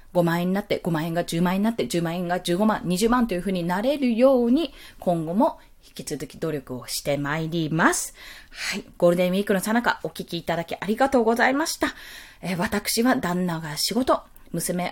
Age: 20-39